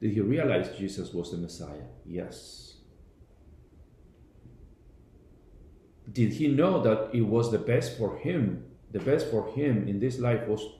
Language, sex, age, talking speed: Spanish, male, 50-69, 145 wpm